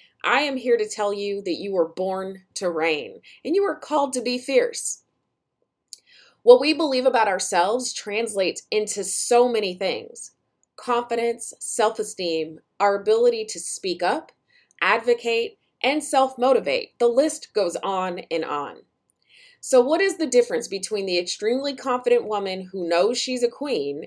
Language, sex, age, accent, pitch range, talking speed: English, female, 30-49, American, 190-285 Hz, 150 wpm